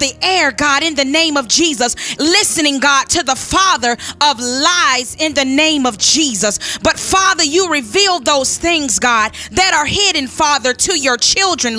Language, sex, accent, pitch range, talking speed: English, female, American, 270-345 Hz, 175 wpm